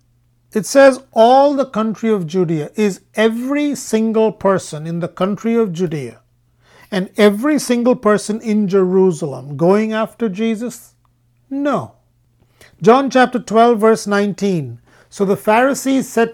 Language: English